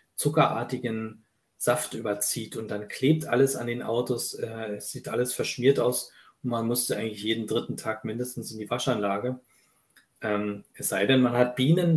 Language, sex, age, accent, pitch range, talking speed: German, male, 40-59, German, 110-140 Hz, 160 wpm